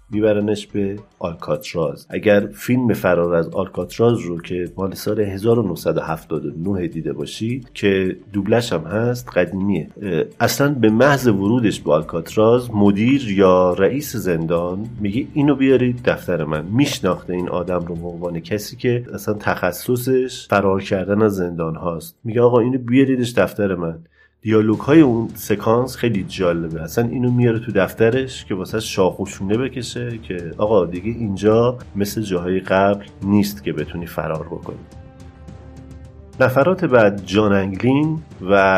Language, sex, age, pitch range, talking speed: Persian, male, 40-59, 90-115 Hz, 135 wpm